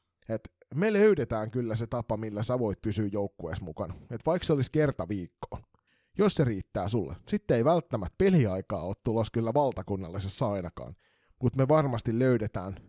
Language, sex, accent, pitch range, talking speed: Finnish, male, native, 100-135 Hz, 165 wpm